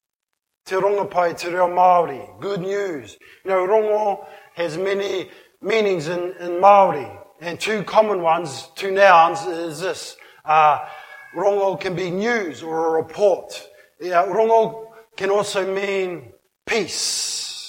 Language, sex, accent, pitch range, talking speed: English, male, Australian, 175-200 Hz, 130 wpm